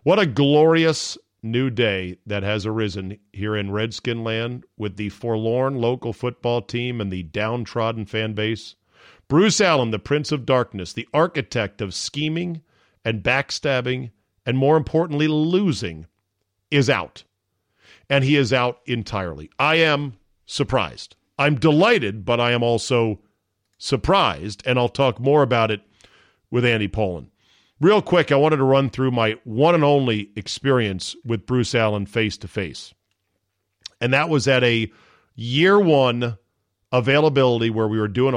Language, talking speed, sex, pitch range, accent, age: English, 145 wpm, male, 105-140 Hz, American, 50-69